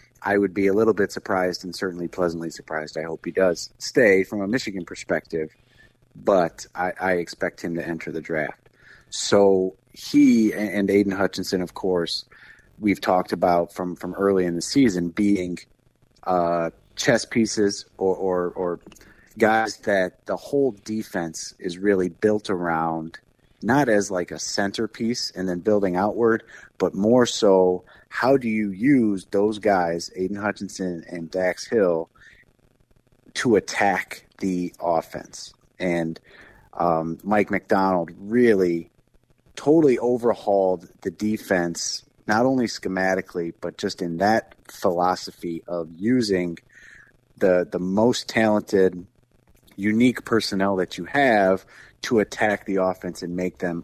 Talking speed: 135 wpm